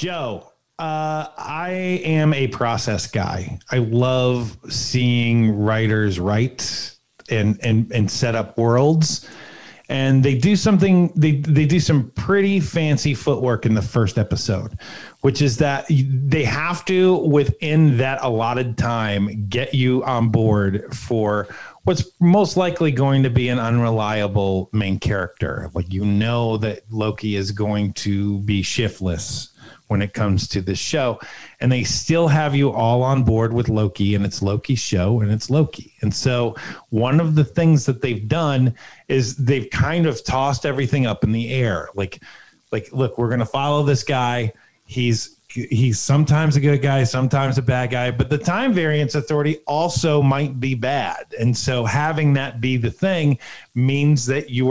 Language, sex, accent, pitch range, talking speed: English, male, American, 110-145 Hz, 160 wpm